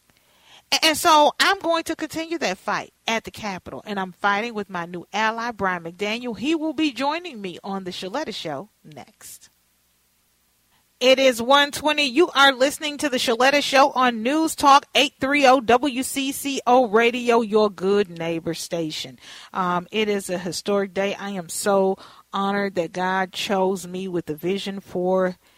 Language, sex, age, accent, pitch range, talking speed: English, female, 40-59, American, 175-235 Hz, 160 wpm